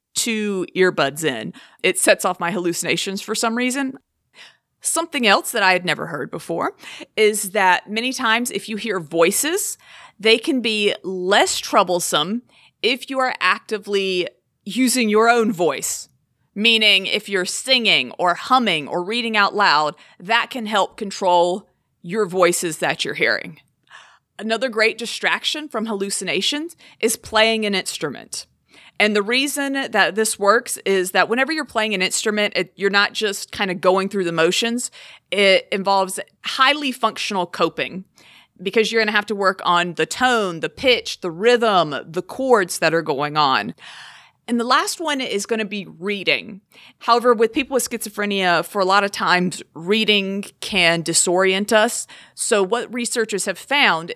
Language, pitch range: English, 185-230 Hz